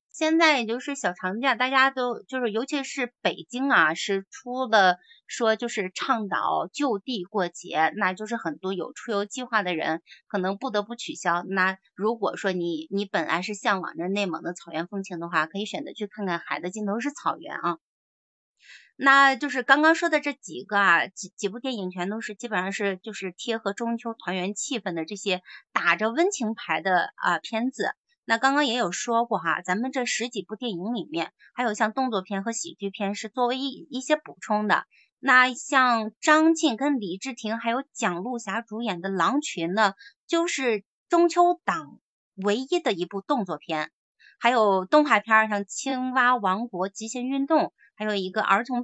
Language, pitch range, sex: Chinese, 190-260 Hz, female